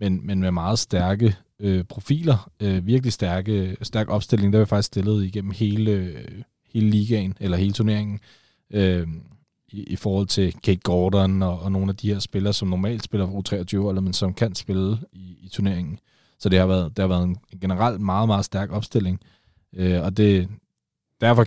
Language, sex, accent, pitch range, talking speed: Danish, male, native, 95-110 Hz, 185 wpm